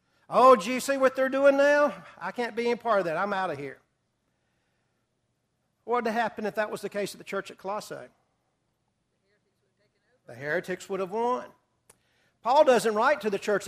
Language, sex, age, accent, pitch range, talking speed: English, male, 50-69, American, 180-245 Hz, 195 wpm